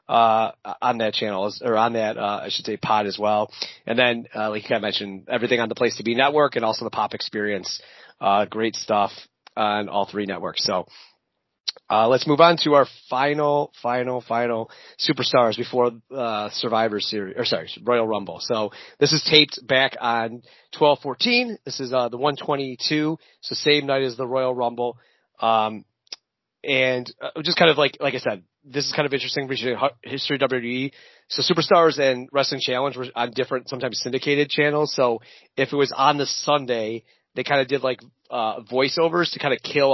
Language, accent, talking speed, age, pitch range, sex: English, American, 190 wpm, 30-49, 115-140 Hz, male